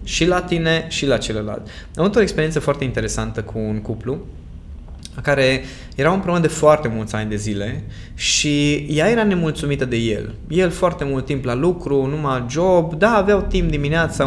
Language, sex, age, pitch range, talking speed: Romanian, male, 20-39, 120-170 Hz, 175 wpm